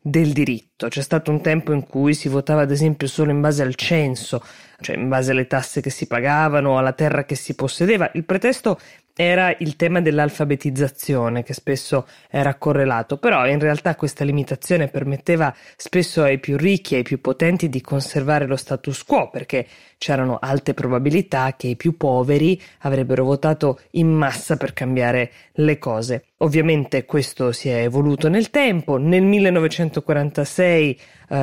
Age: 20-39